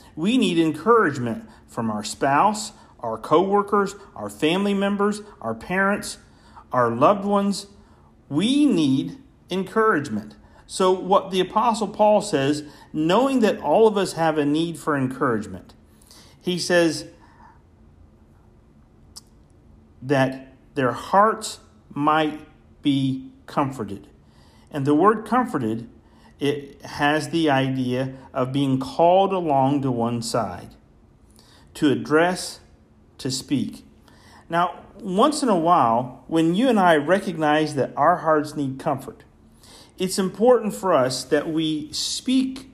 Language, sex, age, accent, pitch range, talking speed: English, male, 40-59, American, 135-195 Hz, 120 wpm